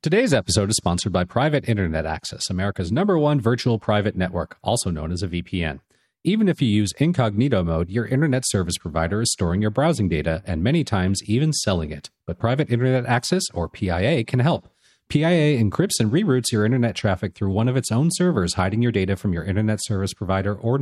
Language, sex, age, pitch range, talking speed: English, male, 40-59, 95-130 Hz, 200 wpm